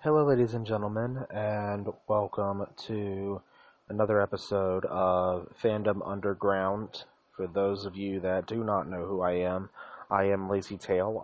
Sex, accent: male, American